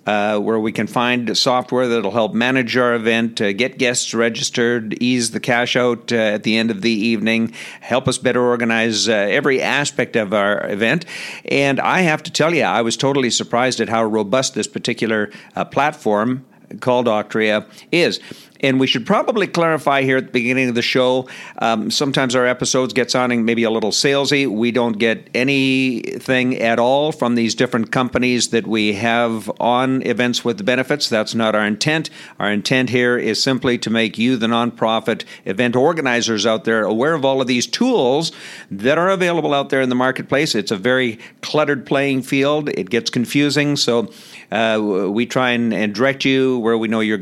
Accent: American